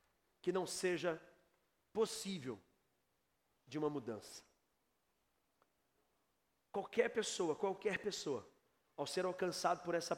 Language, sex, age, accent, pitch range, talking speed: Portuguese, male, 40-59, Brazilian, 185-230 Hz, 95 wpm